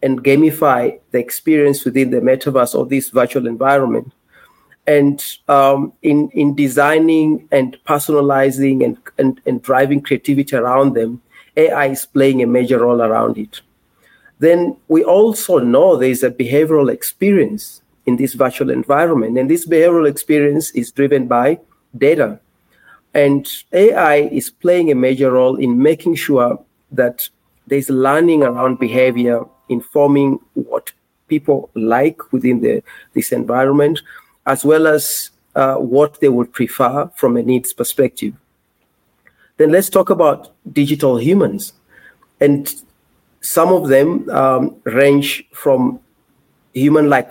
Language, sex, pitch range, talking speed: English, male, 130-150 Hz, 125 wpm